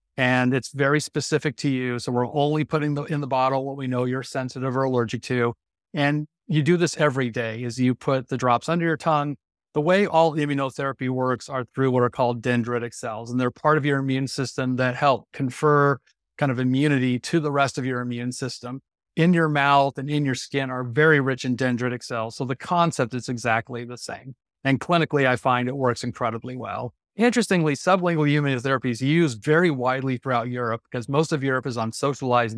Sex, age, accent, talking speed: male, 40-59, American, 205 wpm